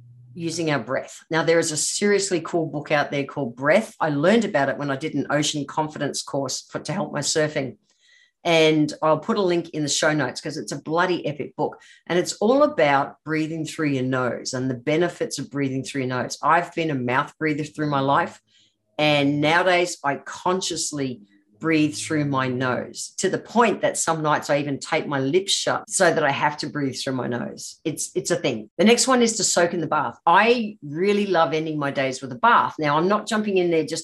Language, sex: English, female